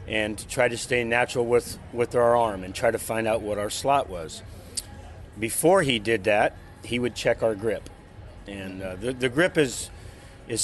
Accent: American